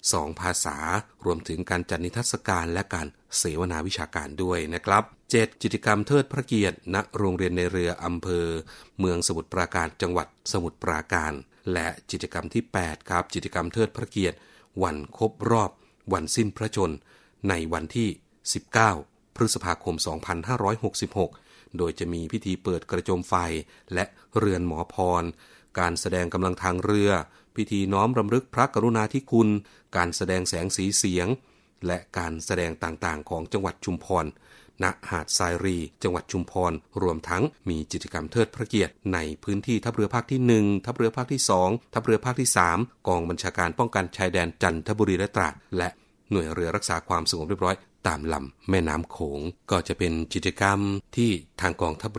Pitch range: 85-105 Hz